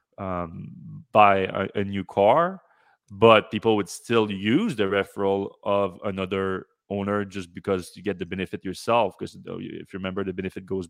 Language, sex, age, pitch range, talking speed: English, male, 20-39, 95-105 Hz, 165 wpm